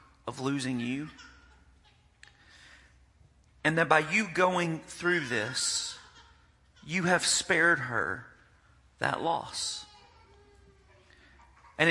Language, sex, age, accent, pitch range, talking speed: English, male, 40-59, American, 110-150 Hz, 85 wpm